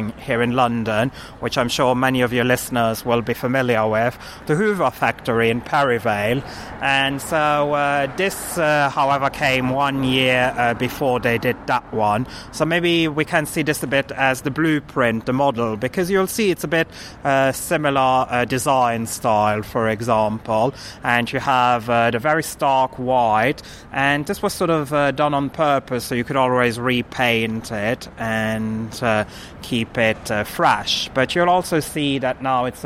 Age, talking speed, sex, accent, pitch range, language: 30-49, 175 wpm, male, British, 115-140 Hz, English